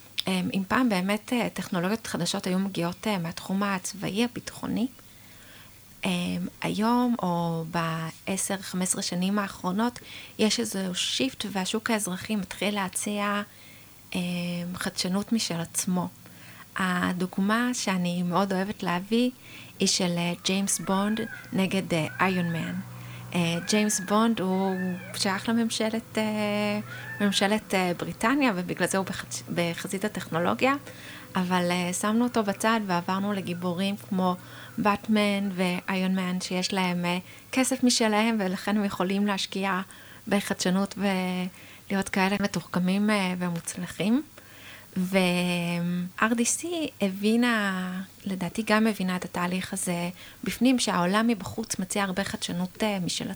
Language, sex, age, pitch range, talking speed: Hebrew, female, 30-49, 180-210 Hz, 105 wpm